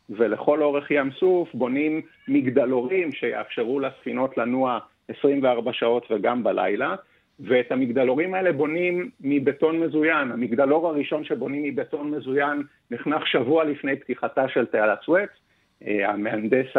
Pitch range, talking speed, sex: 130-165 Hz, 115 wpm, male